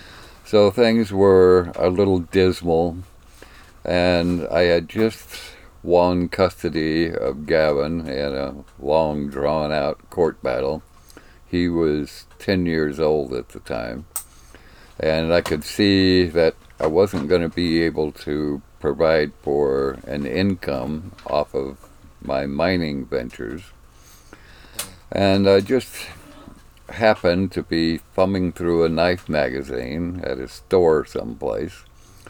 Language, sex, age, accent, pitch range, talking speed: English, male, 60-79, American, 70-90 Hz, 120 wpm